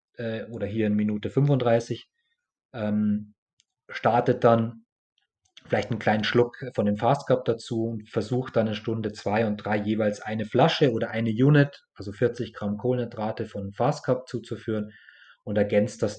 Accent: German